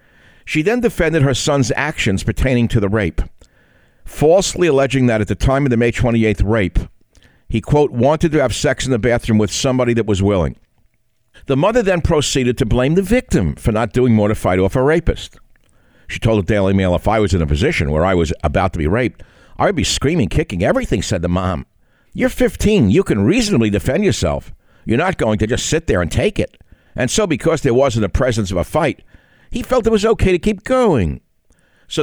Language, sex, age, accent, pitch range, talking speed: English, male, 60-79, American, 100-140 Hz, 215 wpm